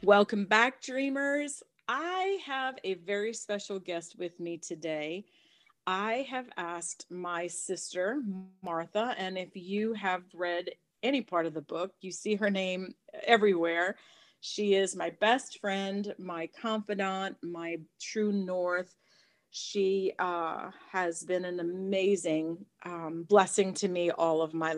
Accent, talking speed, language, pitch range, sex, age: American, 135 wpm, English, 180-215 Hz, female, 40-59